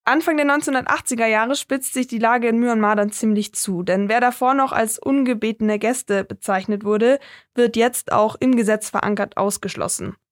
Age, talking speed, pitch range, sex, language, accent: 10-29, 170 wpm, 220-260 Hz, female, German, German